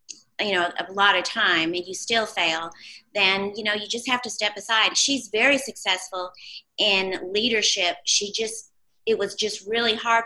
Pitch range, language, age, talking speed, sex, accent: 180-220 Hz, English, 30-49, 180 wpm, female, American